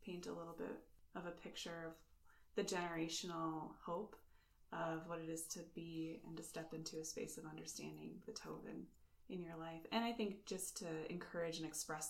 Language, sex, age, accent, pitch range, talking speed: English, female, 20-39, American, 160-175 Hz, 195 wpm